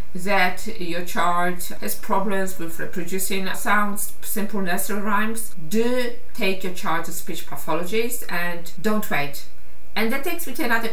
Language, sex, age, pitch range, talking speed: English, female, 50-69, 175-215 Hz, 150 wpm